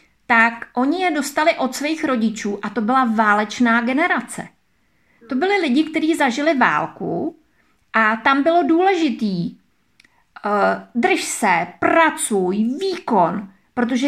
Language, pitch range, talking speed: Czech, 240-310 Hz, 120 wpm